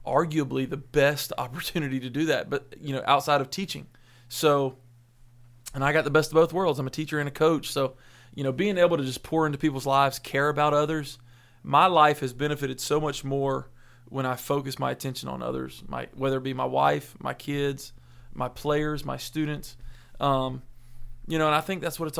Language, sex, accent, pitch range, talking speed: English, male, American, 130-150 Hz, 210 wpm